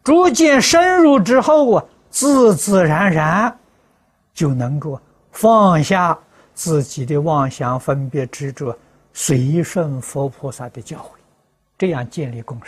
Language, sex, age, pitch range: Chinese, male, 60-79, 130-190 Hz